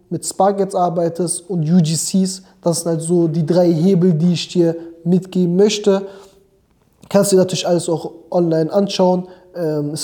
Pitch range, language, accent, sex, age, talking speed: 170-195 Hz, German, German, male, 20-39, 160 wpm